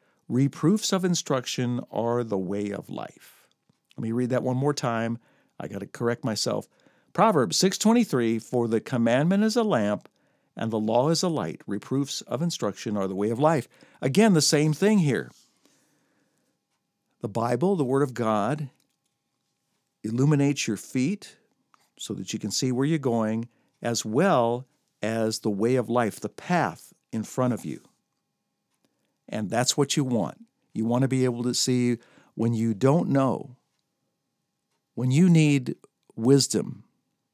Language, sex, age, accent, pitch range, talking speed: English, male, 50-69, American, 120-165 Hz, 155 wpm